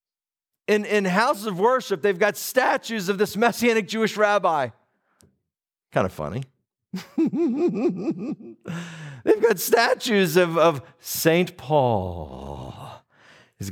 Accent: American